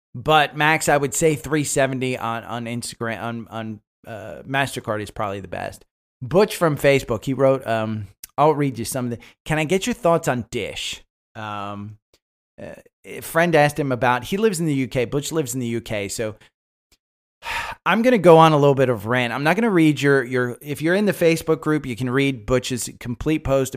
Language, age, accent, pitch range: English, 30-49, American, 110-145 Hz